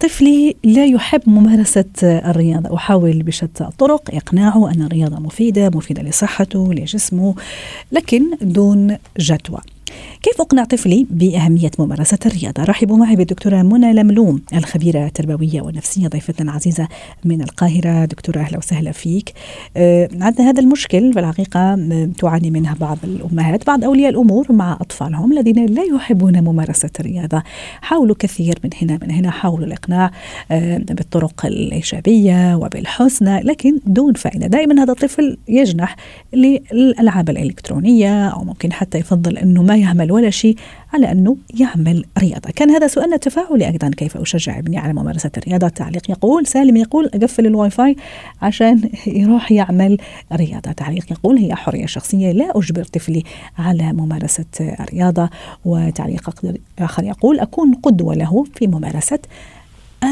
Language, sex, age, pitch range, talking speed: Arabic, female, 40-59, 165-230 Hz, 135 wpm